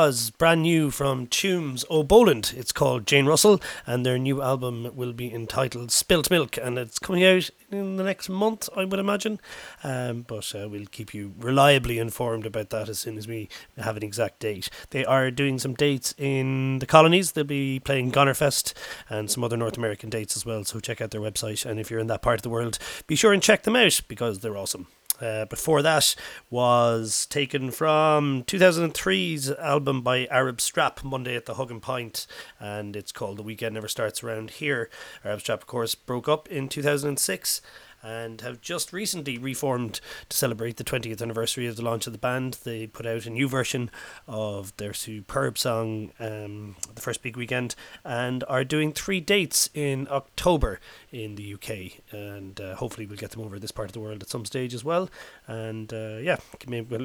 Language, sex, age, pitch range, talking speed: English, male, 30-49, 110-140 Hz, 195 wpm